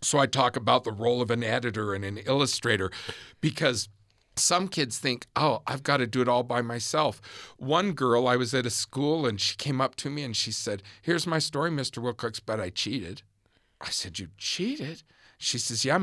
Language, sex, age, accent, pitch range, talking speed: English, male, 50-69, American, 110-145 Hz, 210 wpm